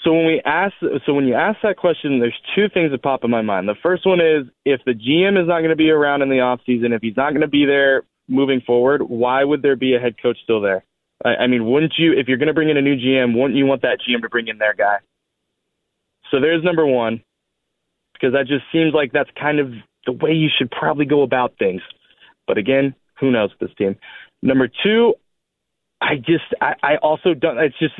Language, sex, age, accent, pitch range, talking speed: English, male, 20-39, American, 130-165 Hz, 240 wpm